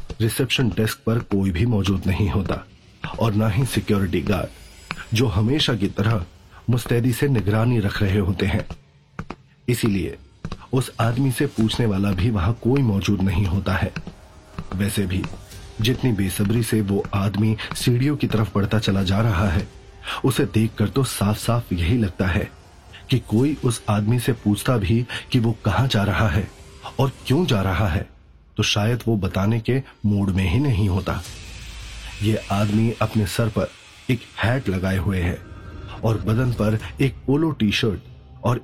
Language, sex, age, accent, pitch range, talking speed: Hindi, male, 30-49, native, 100-120 Hz, 165 wpm